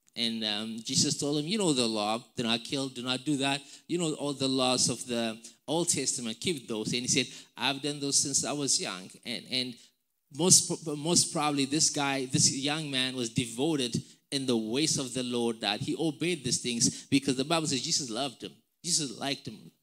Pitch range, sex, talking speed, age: 120-150 Hz, male, 210 wpm, 20-39